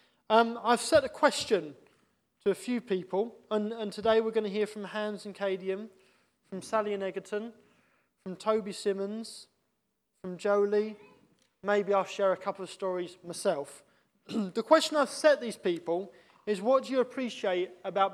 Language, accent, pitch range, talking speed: English, British, 190-230 Hz, 160 wpm